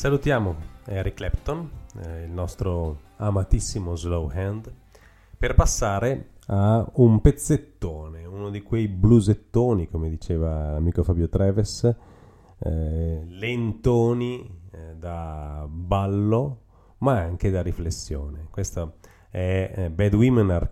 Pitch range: 85-105 Hz